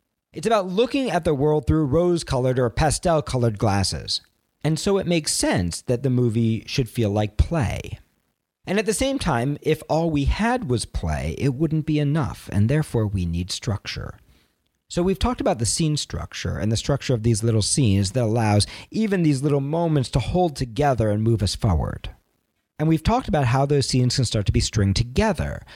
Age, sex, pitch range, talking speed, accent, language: 40-59, male, 105-155 Hz, 195 wpm, American, English